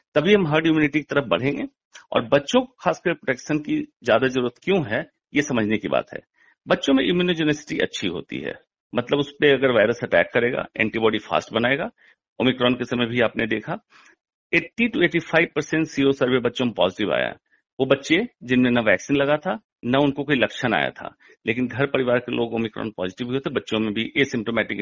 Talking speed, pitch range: 195 wpm, 115-155 Hz